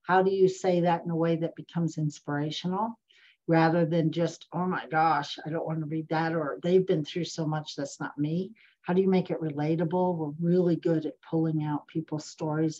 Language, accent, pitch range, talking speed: English, American, 155-185 Hz, 215 wpm